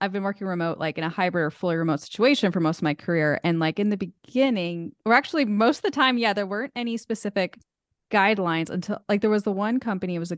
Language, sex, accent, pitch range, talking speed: English, female, American, 165-210 Hz, 255 wpm